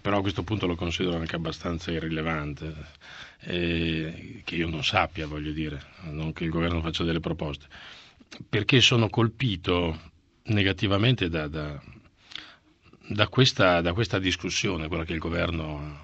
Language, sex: Italian, male